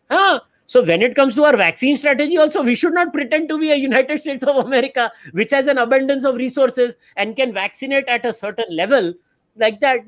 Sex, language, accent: male, English, Indian